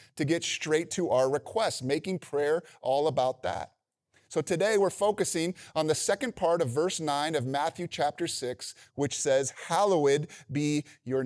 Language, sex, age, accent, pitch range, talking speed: English, male, 30-49, American, 145-180 Hz, 165 wpm